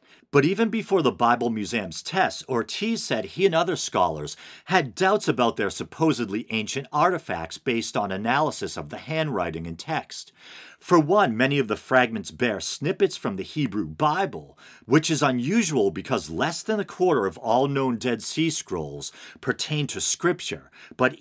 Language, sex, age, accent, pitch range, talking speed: English, male, 50-69, American, 95-160 Hz, 165 wpm